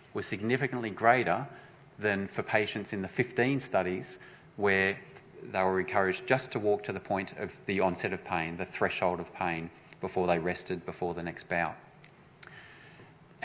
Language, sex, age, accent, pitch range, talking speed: English, male, 30-49, Australian, 95-110 Hz, 160 wpm